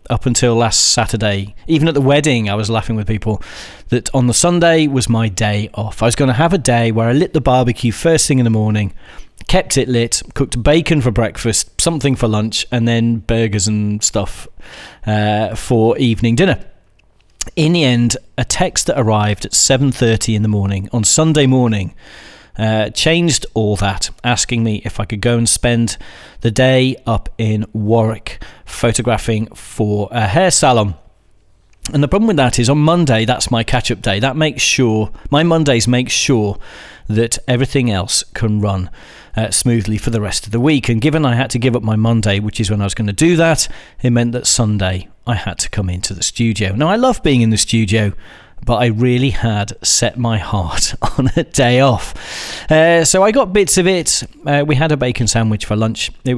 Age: 30-49